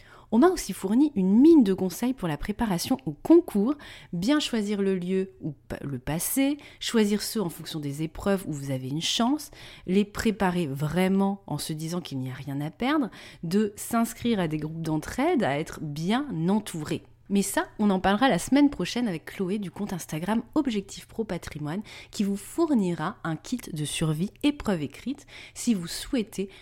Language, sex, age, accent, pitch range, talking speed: French, female, 30-49, French, 155-210 Hz, 185 wpm